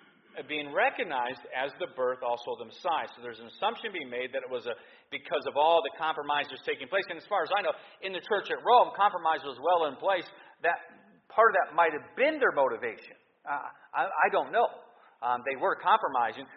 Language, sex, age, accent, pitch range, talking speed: English, male, 40-59, American, 150-215 Hz, 210 wpm